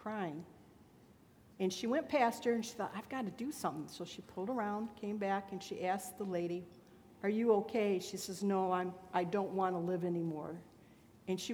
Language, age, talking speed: English, 60-79, 210 wpm